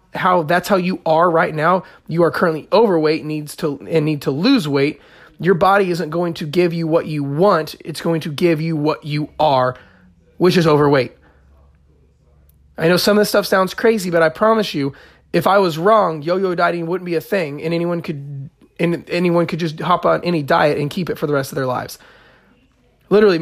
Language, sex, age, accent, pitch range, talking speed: English, male, 20-39, American, 155-190 Hz, 215 wpm